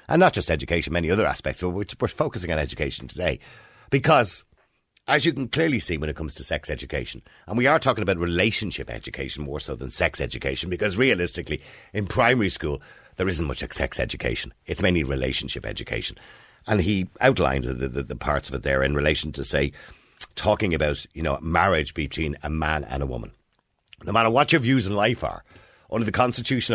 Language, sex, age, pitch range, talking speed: English, male, 50-69, 75-110 Hz, 195 wpm